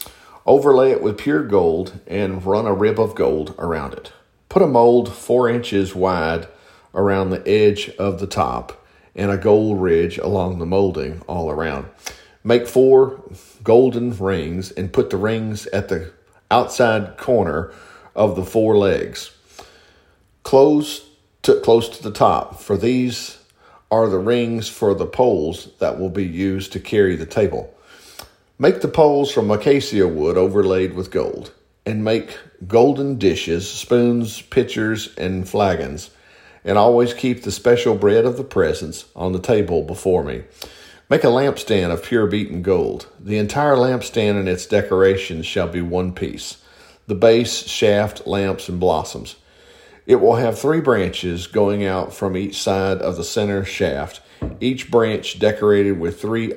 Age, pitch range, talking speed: 50-69, 95-120 Hz, 155 wpm